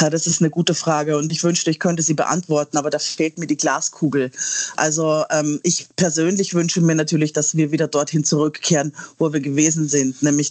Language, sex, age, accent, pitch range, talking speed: German, female, 30-49, German, 155-175 Hz, 200 wpm